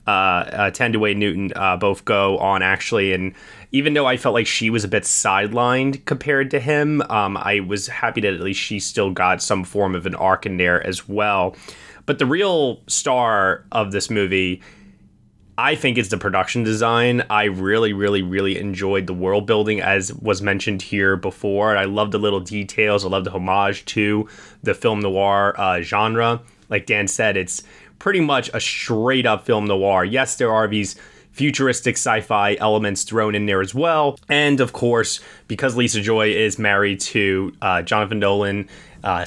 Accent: American